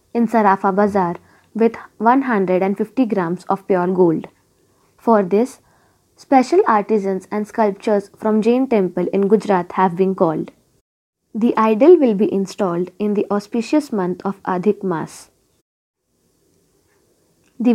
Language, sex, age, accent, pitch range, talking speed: Marathi, female, 20-39, native, 190-235 Hz, 120 wpm